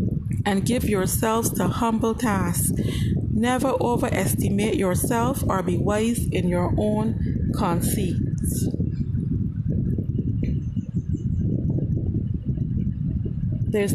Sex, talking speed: female, 75 wpm